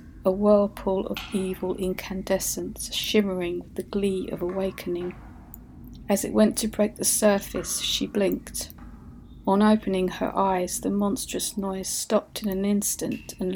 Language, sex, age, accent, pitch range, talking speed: English, female, 40-59, British, 180-205 Hz, 140 wpm